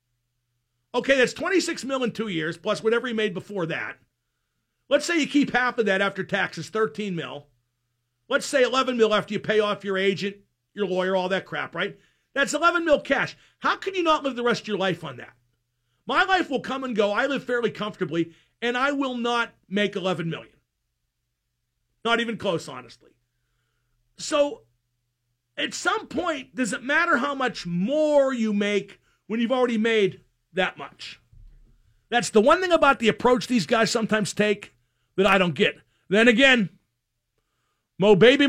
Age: 50-69